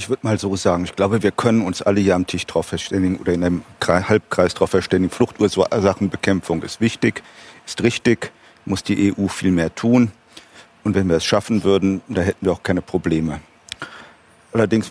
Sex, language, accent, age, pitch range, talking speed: male, German, German, 40-59, 95-110 Hz, 185 wpm